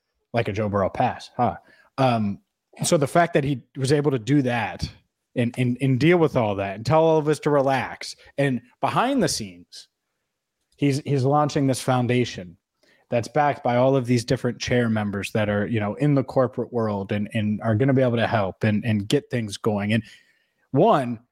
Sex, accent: male, American